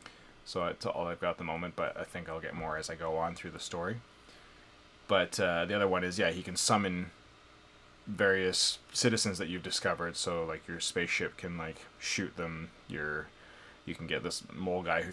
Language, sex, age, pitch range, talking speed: English, male, 20-39, 85-105 Hz, 205 wpm